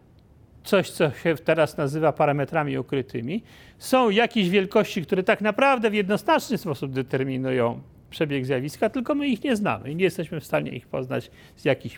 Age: 40-59